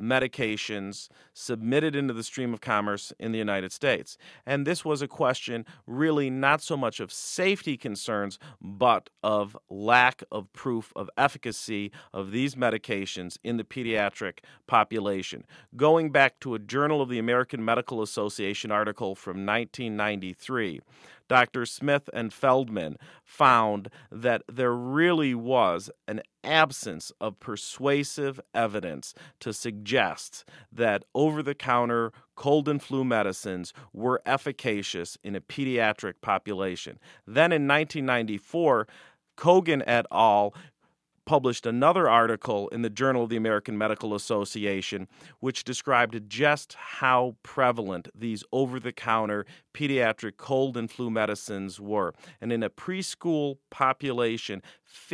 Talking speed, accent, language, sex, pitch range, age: 130 wpm, American, English, male, 105-135 Hz, 40-59